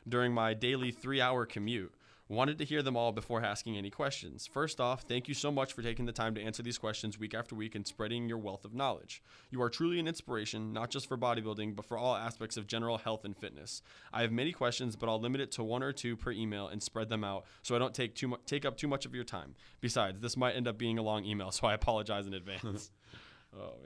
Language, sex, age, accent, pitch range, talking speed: English, male, 20-39, American, 110-125 Hz, 255 wpm